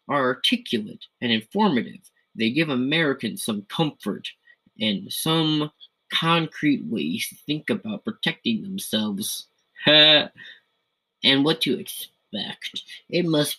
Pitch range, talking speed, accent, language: 140-215 Hz, 105 wpm, American, English